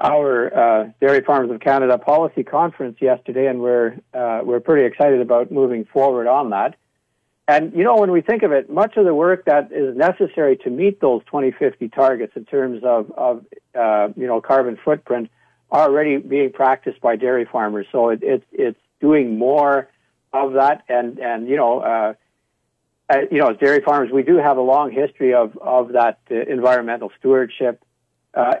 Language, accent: English, American